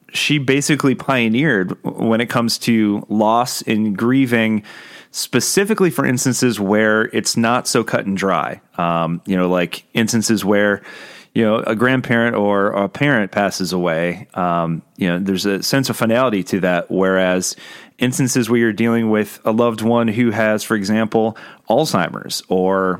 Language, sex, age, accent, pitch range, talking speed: English, male, 30-49, American, 95-120 Hz, 155 wpm